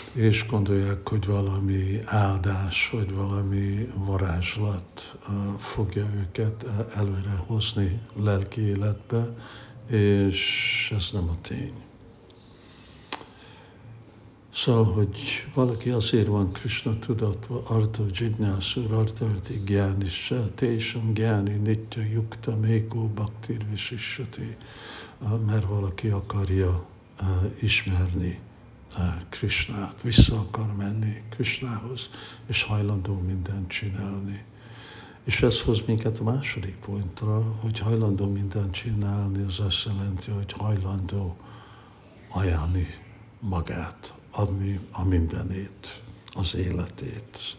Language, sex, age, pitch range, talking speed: Hungarian, male, 60-79, 100-115 Hz, 95 wpm